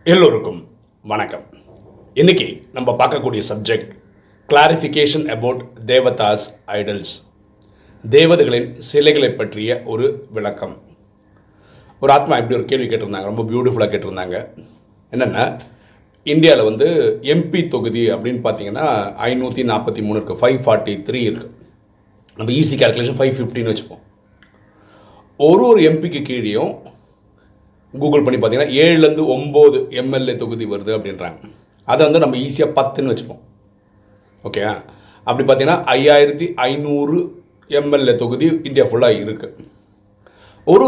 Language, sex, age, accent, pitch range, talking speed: Tamil, male, 40-59, native, 105-150 Hz, 110 wpm